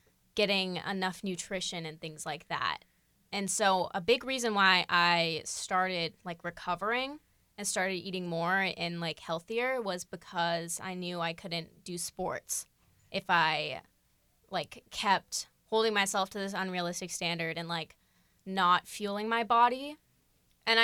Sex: female